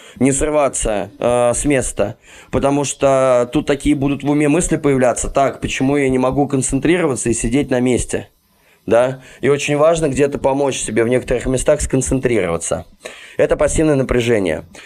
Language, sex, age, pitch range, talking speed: Russian, male, 20-39, 120-145 Hz, 145 wpm